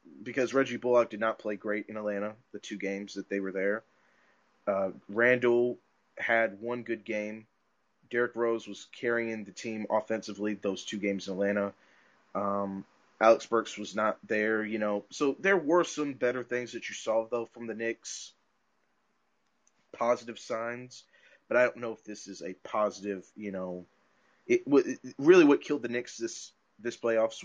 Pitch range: 105-125 Hz